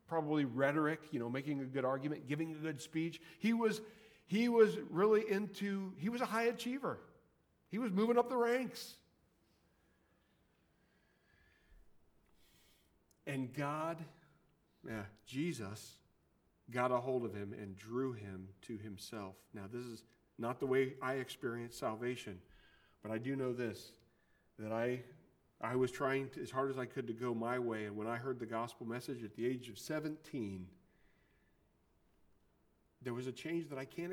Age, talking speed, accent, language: 40-59, 160 wpm, American, English